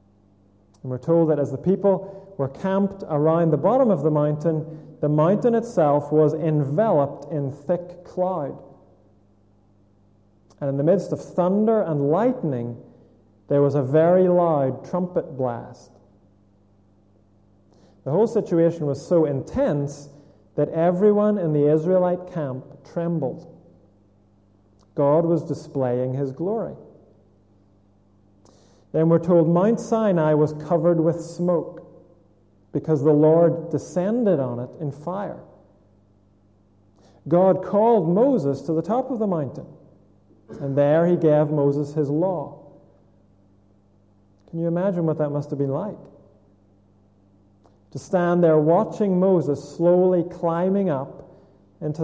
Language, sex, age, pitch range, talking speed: English, male, 40-59, 105-170 Hz, 125 wpm